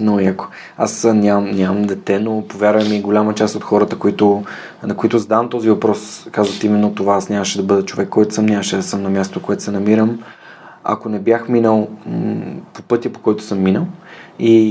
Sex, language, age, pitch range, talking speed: male, Bulgarian, 20-39, 105-125 Hz, 195 wpm